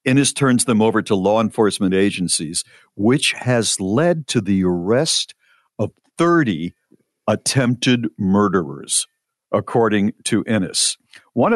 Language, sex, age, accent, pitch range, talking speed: English, male, 50-69, American, 95-135 Hz, 115 wpm